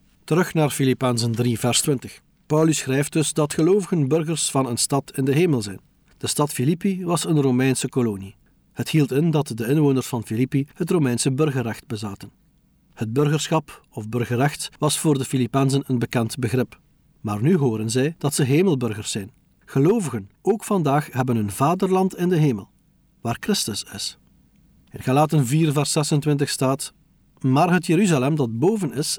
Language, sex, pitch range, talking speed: Dutch, male, 125-160 Hz, 165 wpm